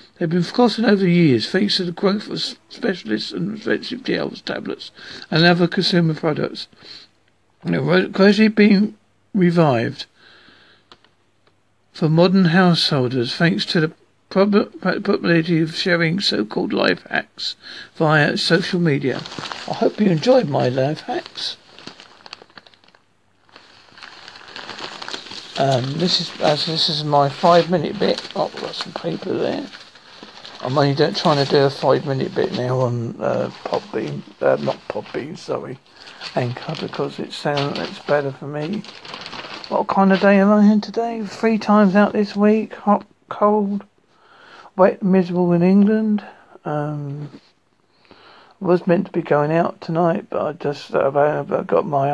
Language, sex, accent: English, male, British